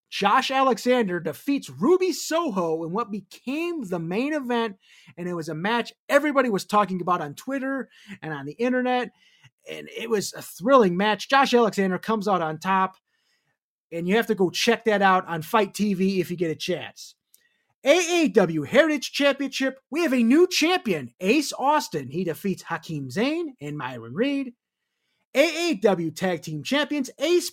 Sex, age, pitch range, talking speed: male, 30-49, 180-280 Hz, 165 wpm